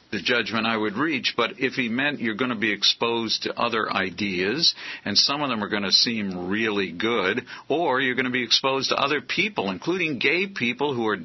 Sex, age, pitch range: male, 50-69, 105-135 Hz